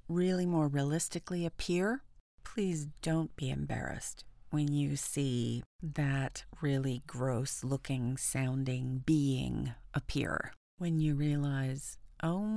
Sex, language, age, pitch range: female, English, 40-59, 140-190 Hz